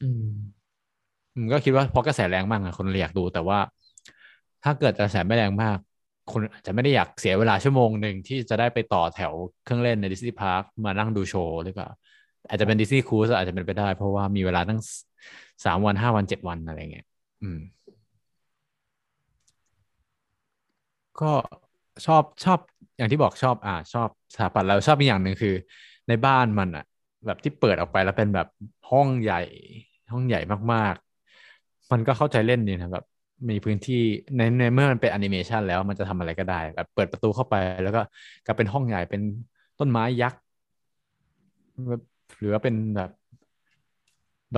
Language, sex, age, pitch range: Thai, male, 20-39, 95-120 Hz